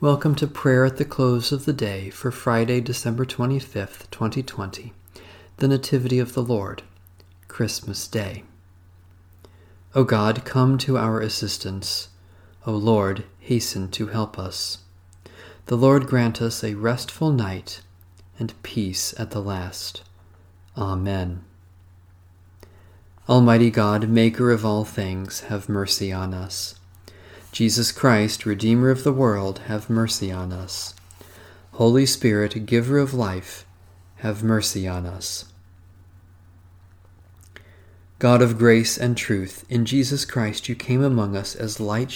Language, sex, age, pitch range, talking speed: English, male, 40-59, 95-120 Hz, 125 wpm